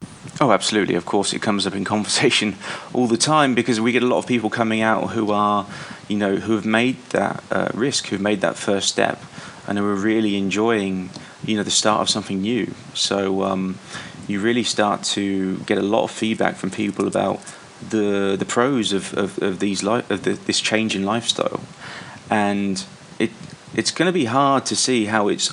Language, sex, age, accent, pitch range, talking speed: English, male, 30-49, British, 95-110 Hz, 205 wpm